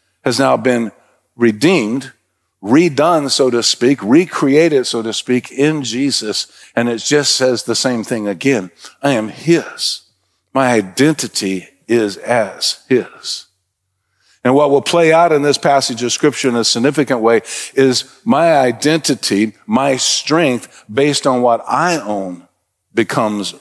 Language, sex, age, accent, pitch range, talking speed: English, male, 50-69, American, 115-145 Hz, 140 wpm